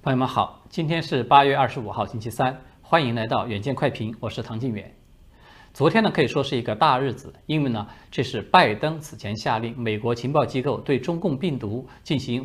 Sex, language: male, Chinese